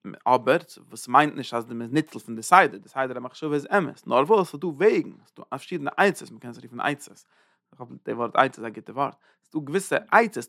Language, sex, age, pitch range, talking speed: English, male, 30-49, 130-200 Hz, 265 wpm